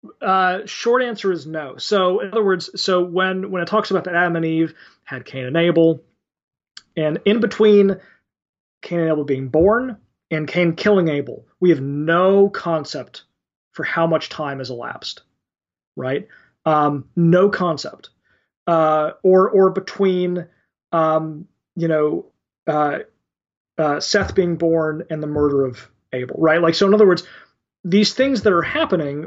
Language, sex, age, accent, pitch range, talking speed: English, male, 30-49, American, 150-190 Hz, 160 wpm